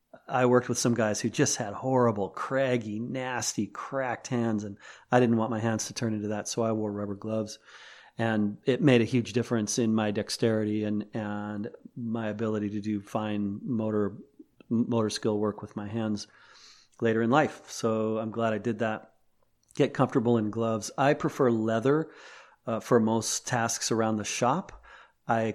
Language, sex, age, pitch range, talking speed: English, male, 40-59, 110-125 Hz, 175 wpm